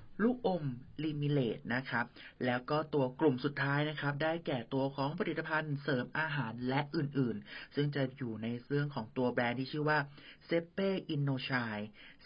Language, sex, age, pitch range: Thai, male, 30-49, 125-165 Hz